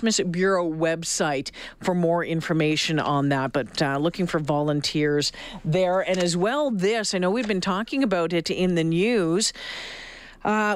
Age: 40-59